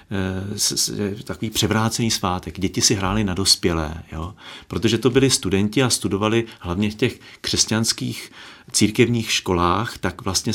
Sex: male